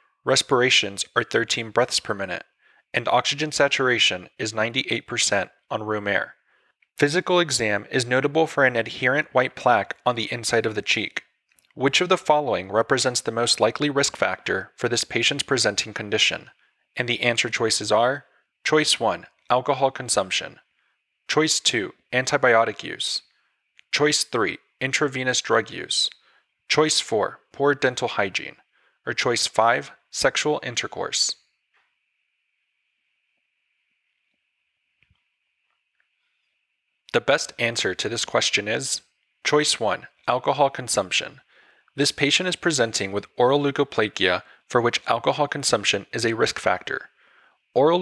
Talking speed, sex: 125 wpm, male